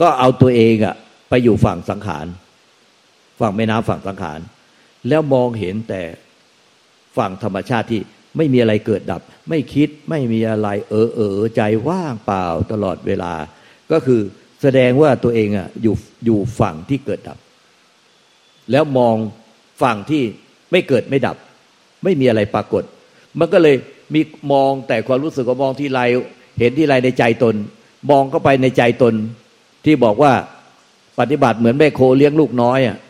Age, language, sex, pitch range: 60-79, Thai, male, 115-145 Hz